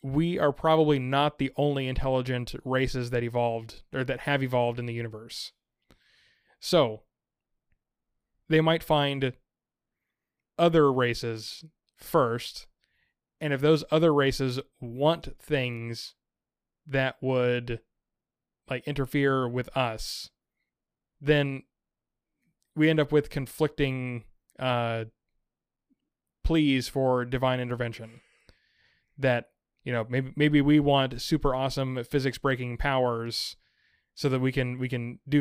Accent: American